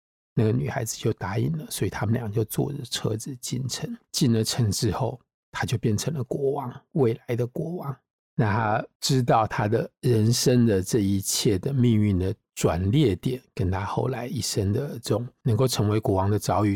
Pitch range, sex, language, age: 100-125 Hz, male, Chinese, 50-69